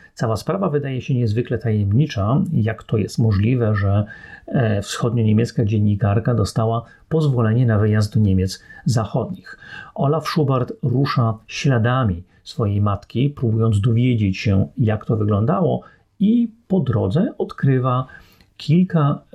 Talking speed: 120 wpm